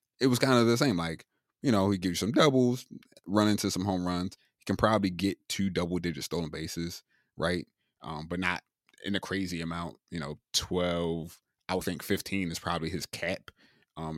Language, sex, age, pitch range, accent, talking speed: English, male, 20-39, 85-110 Hz, American, 205 wpm